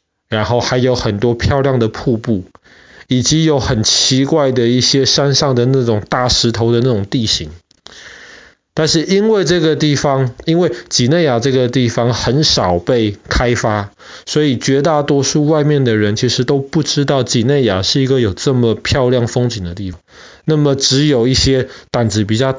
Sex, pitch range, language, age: male, 110-135 Hz, Chinese, 20-39